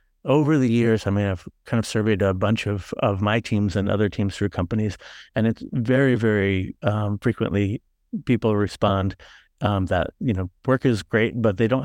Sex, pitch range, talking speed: male, 100-115 Hz, 190 wpm